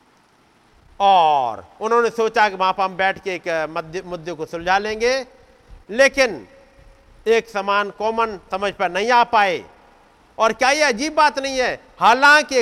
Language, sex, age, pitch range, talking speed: Hindi, male, 50-69, 160-220 Hz, 145 wpm